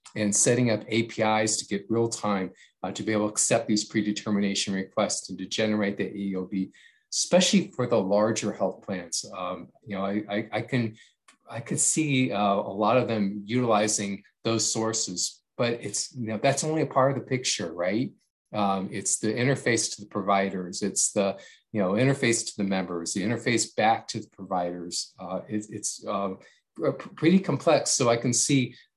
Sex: male